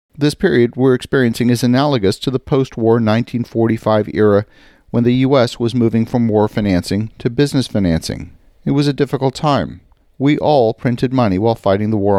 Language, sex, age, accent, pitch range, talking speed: English, male, 50-69, American, 100-125 Hz, 170 wpm